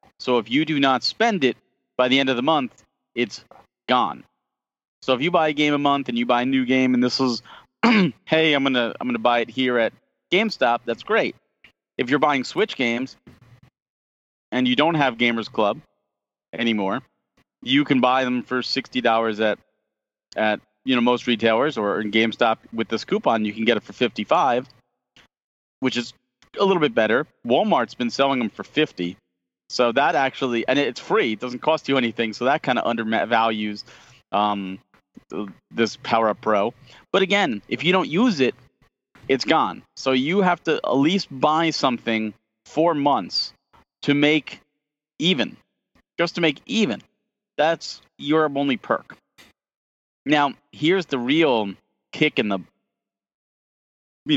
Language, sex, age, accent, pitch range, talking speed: English, male, 40-59, American, 115-145 Hz, 170 wpm